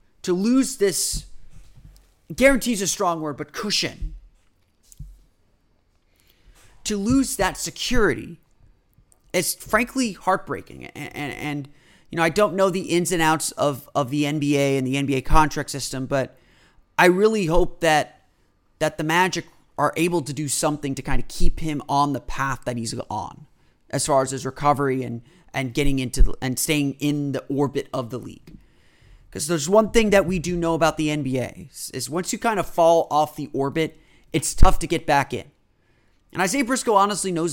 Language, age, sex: English, 30-49, male